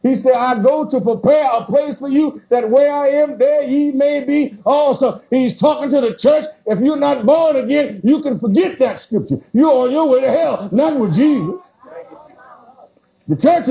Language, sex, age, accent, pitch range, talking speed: English, male, 60-79, American, 195-275 Hz, 195 wpm